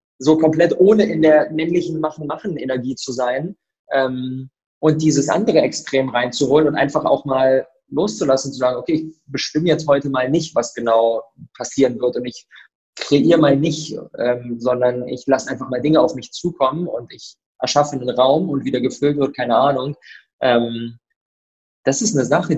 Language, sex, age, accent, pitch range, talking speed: German, male, 20-39, German, 125-155 Hz, 175 wpm